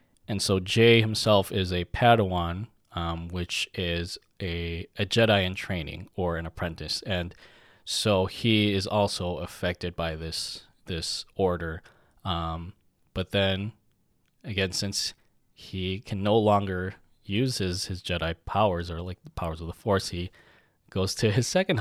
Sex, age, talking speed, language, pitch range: male, 20-39, 150 wpm, English, 90-110 Hz